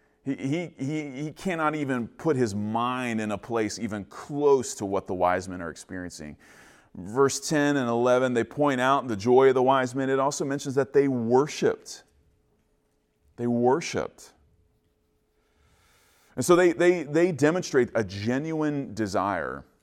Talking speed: 150 wpm